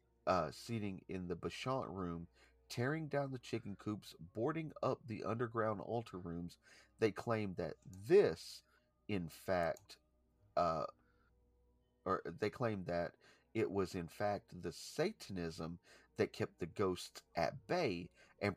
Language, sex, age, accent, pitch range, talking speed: English, male, 40-59, American, 90-125 Hz, 135 wpm